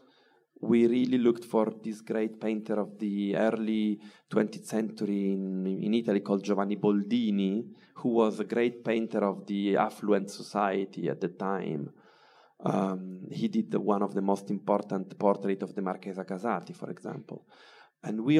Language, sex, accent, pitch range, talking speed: English, male, Italian, 100-120 Hz, 155 wpm